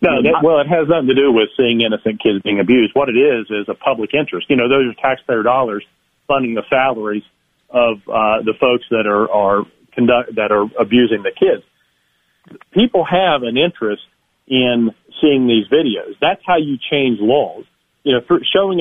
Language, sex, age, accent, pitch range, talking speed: English, male, 40-59, American, 125-170 Hz, 190 wpm